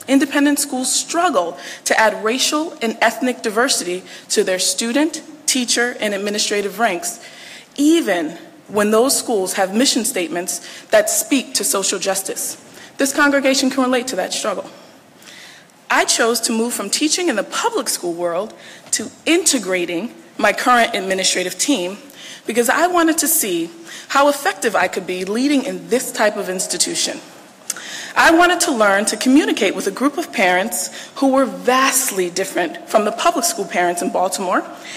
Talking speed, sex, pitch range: 155 wpm, female, 200-285 Hz